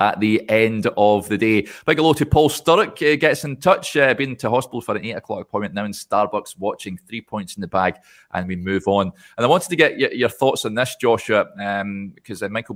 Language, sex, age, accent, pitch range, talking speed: English, male, 30-49, British, 100-130 Hz, 245 wpm